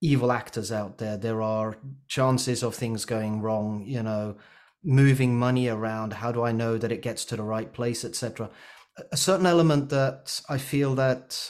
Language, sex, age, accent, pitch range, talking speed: English, male, 30-49, British, 115-140 Hz, 185 wpm